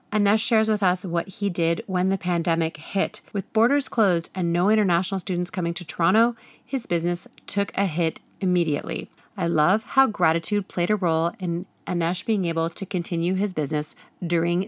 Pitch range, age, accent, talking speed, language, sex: 175-245 Hz, 30-49, American, 175 wpm, English, female